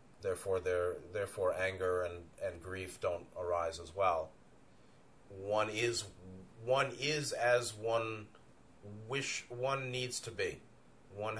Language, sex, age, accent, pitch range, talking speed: English, male, 30-49, American, 100-135 Hz, 115 wpm